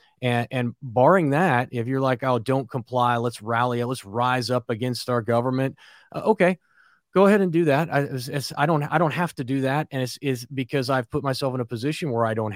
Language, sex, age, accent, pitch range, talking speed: English, male, 30-49, American, 120-145 Hz, 235 wpm